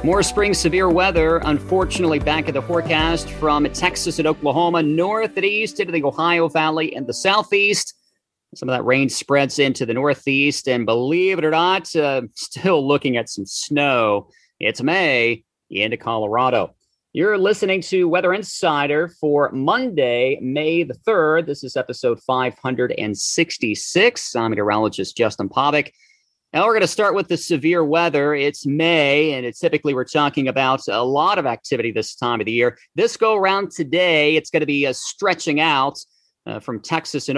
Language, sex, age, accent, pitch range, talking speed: English, male, 40-59, American, 130-170 Hz, 170 wpm